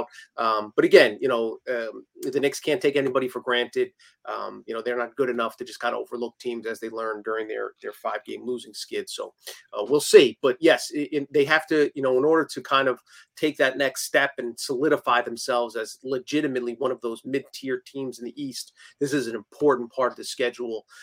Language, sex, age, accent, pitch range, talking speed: English, male, 30-49, American, 120-155 Hz, 215 wpm